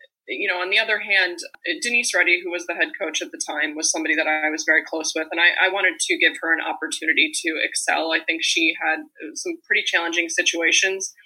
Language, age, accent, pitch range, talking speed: English, 20-39, American, 170-205 Hz, 230 wpm